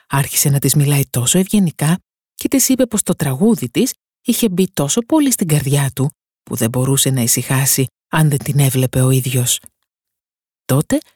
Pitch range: 130-205 Hz